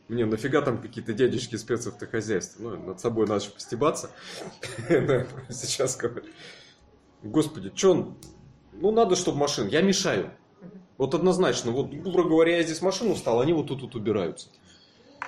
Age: 30-49